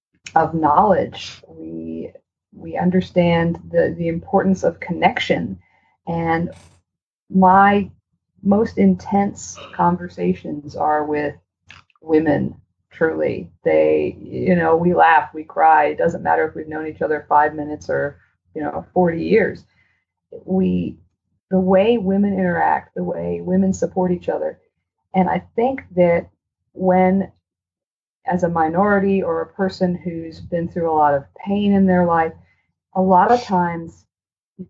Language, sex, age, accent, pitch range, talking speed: English, female, 40-59, American, 150-185 Hz, 135 wpm